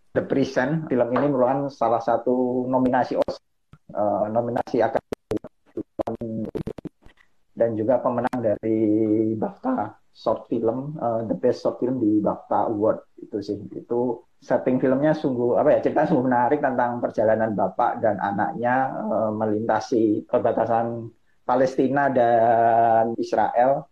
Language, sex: Indonesian, male